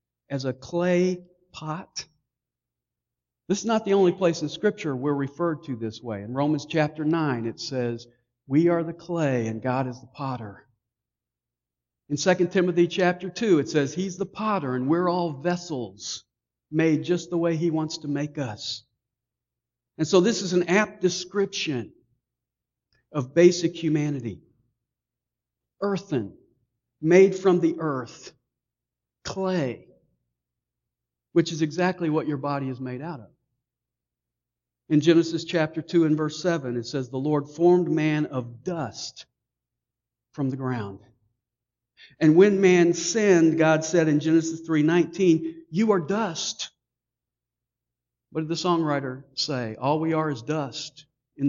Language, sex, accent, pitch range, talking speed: English, male, American, 120-170 Hz, 140 wpm